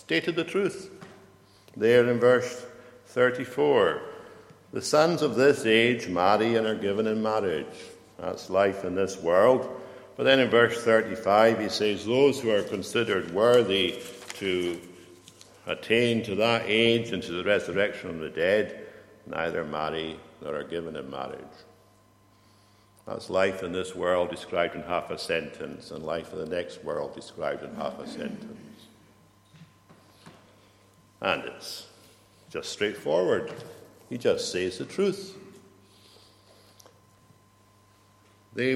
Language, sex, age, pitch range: English, male, 60-79, 95-120 Hz